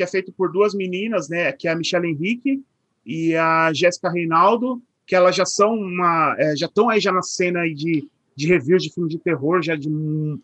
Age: 30-49